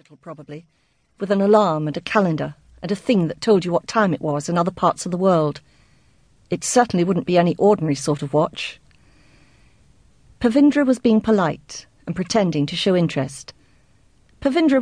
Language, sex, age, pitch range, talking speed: English, female, 50-69, 155-220 Hz, 170 wpm